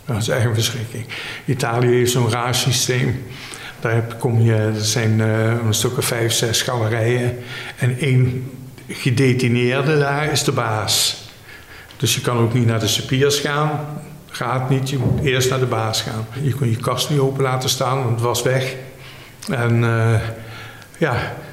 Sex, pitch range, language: male, 120-145 Hz, Dutch